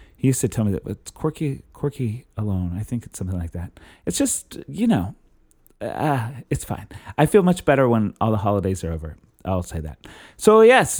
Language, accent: English, American